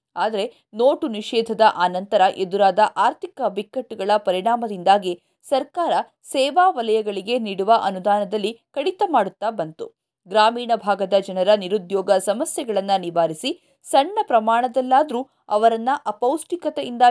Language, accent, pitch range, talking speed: Kannada, native, 205-290 Hz, 90 wpm